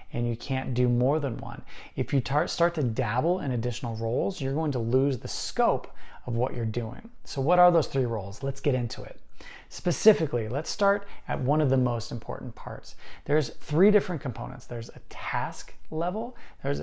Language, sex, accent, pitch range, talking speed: English, male, American, 115-155 Hz, 195 wpm